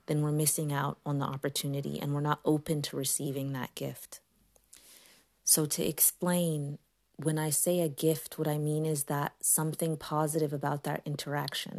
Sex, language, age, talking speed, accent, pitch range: female, English, 30-49, 170 wpm, American, 145-155 Hz